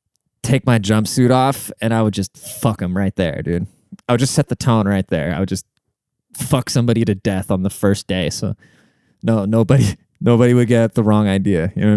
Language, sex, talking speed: English, male, 220 wpm